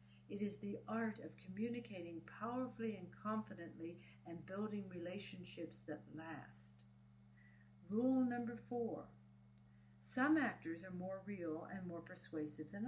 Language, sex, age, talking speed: English, female, 60-79, 120 wpm